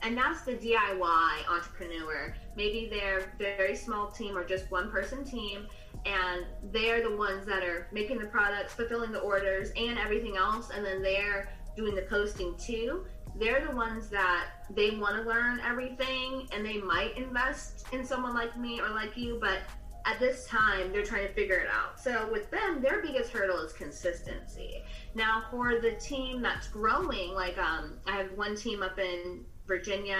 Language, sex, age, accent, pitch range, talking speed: English, female, 20-39, American, 195-240 Hz, 180 wpm